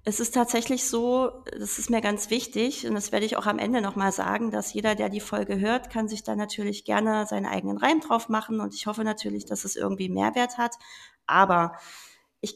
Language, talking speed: German, 215 wpm